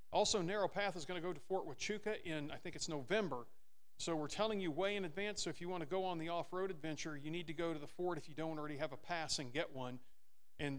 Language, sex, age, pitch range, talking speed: English, male, 40-59, 140-180 Hz, 280 wpm